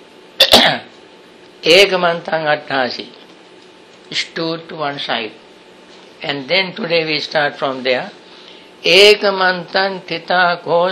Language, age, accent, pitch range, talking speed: English, 60-79, Indian, 150-200 Hz, 80 wpm